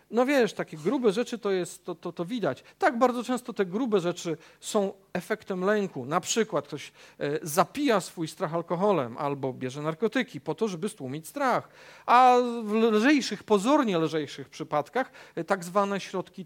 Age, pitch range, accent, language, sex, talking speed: 50-69, 155-215 Hz, native, Polish, male, 160 wpm